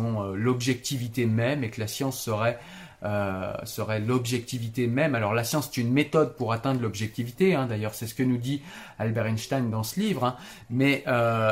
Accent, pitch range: French, 110-140 Hz